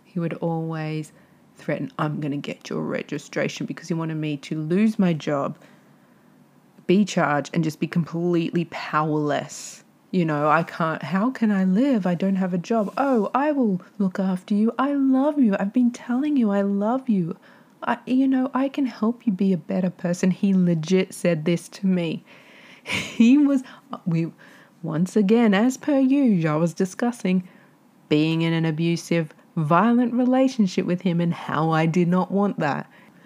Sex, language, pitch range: female, English, 165-220 Hz